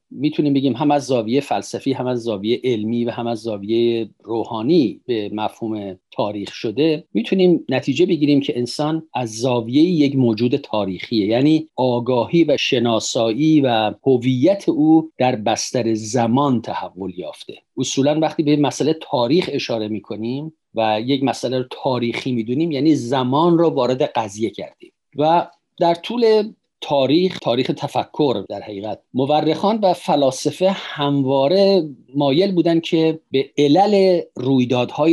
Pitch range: 120-165 Hz